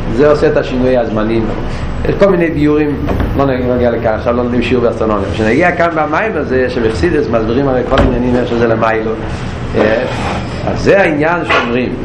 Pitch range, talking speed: 130-155 Hz, 135 wpm